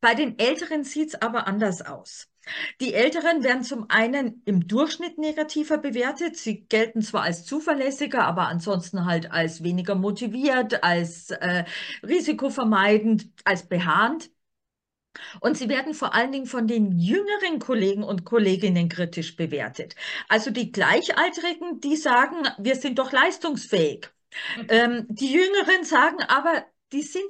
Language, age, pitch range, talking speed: German, 40-59, 215-270 Hz, 140 wpm